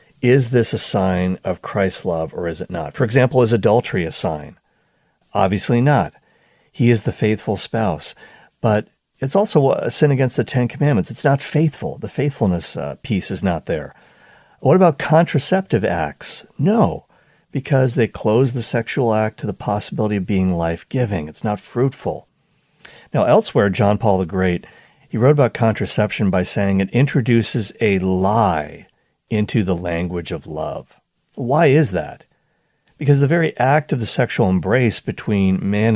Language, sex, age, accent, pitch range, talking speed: English, male, 40-59, American, 95-135 Hz, 160 wpm